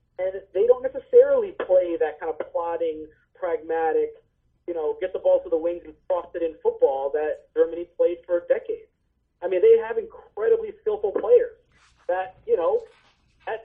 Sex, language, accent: male, English, American